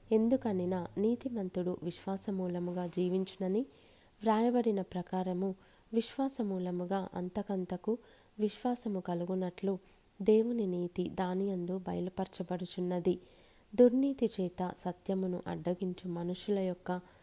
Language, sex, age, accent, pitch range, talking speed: Telugu, female, 30-49, native, 180-215 Hz, 65 wpm